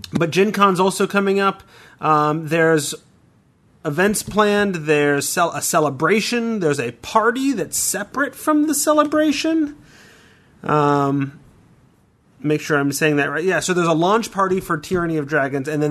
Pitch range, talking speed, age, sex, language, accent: 140-180 Hz, 155 wpm, 30-49, male, English, American